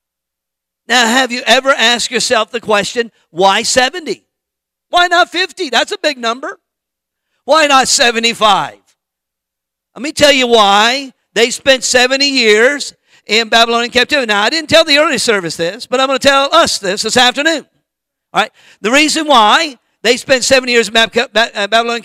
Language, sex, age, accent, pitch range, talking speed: English, male, 50-69, American, 225-270 Hz, 165 wpm